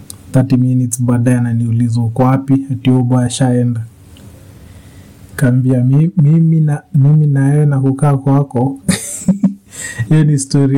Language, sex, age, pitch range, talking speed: Swahili, male, 30-49, 125-145 Hz, 115 wpm